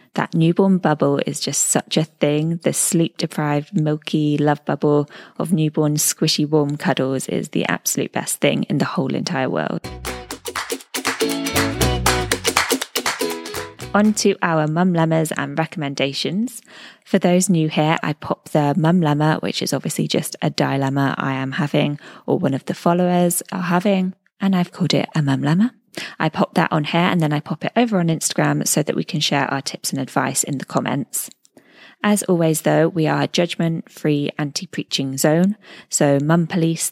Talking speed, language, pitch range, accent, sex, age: 170 wpm, English, 145-180 Hz, British, female, 20-39